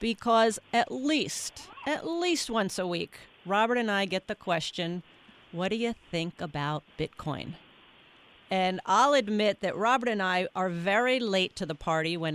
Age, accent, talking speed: 40-59, American, 165 wpm